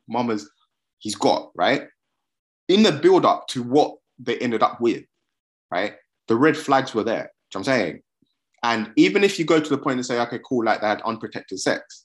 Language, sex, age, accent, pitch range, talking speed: English, male, 30-49, British, 130-195 Hz, 205 wpm